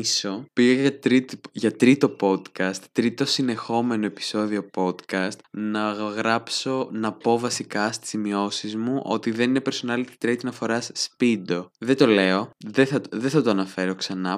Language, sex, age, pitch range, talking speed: Greek, male, 20-39, 105-135 Hz, 150 wpm